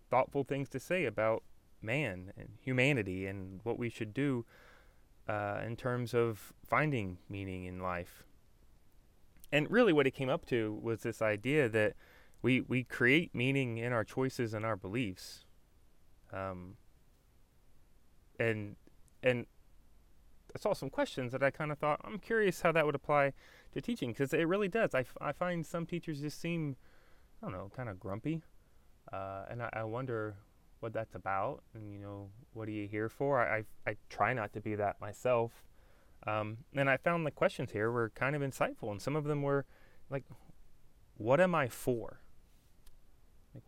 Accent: American